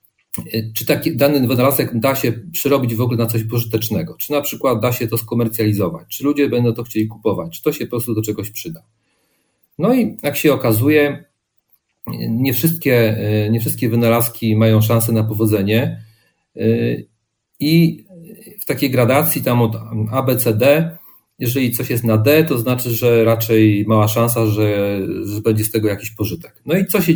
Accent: native